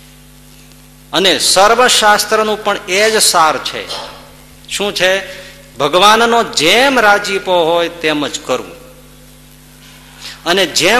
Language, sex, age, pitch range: Gujarati, male, 50-69, 145-210 Hz